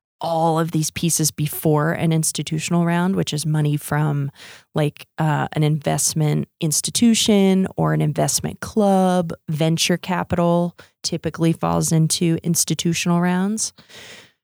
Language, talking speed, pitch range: English, 115 wpm, 150-175 Hz